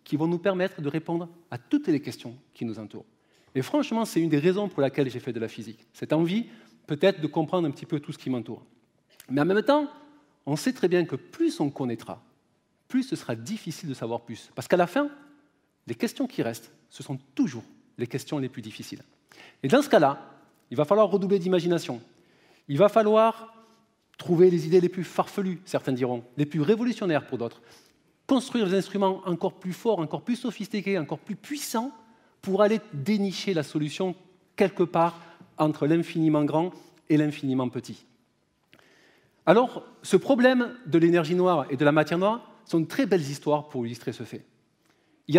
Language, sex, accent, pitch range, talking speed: French, male, French, 140-205 Hz, 190 wpm